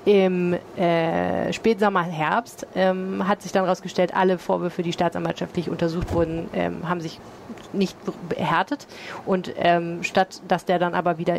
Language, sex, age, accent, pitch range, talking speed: German, female, 30-49, German, 170-200 Hz, 150 wpm